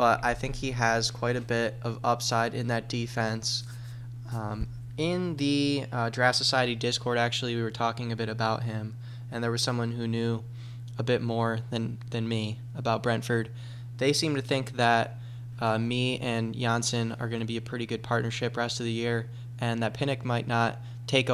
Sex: male